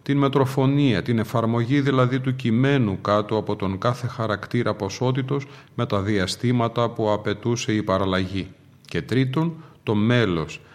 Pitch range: 105-130 Hz